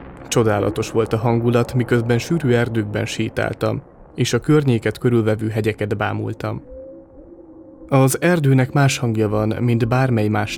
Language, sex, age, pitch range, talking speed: Hungarian, male, 20-39, 110-135 Hz, 125 wpm